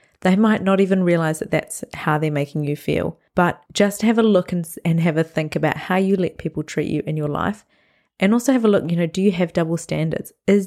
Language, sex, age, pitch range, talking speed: English, female, 20-39, 155-195 Hz, 255 wpm